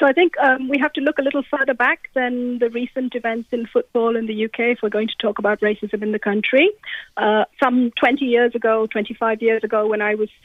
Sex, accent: female, British